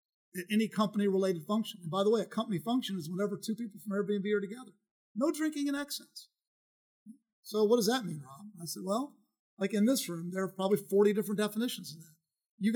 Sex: male